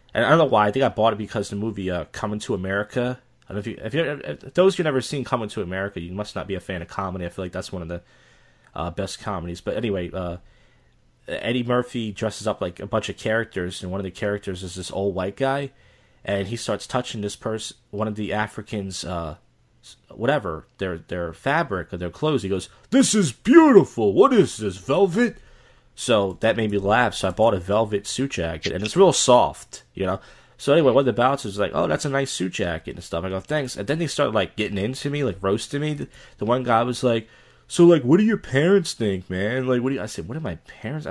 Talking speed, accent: 245 wpm, American